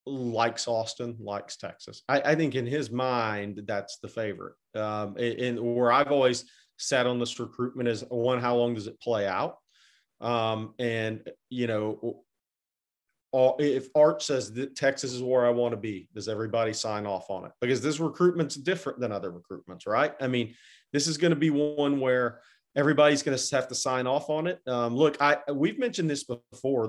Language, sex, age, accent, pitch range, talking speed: English, male, 40-59, American, 115-135 Hz, 190 wpm